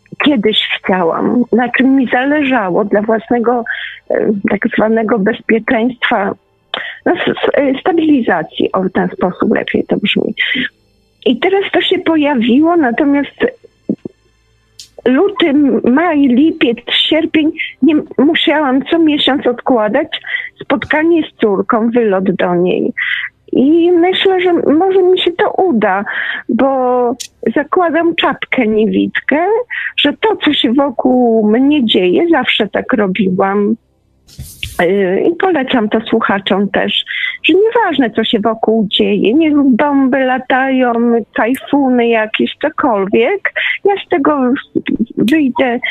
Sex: female